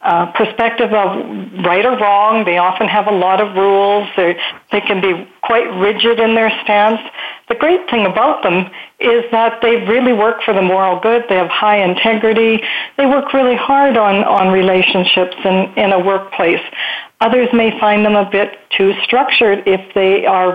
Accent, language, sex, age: American, English, female, 60-79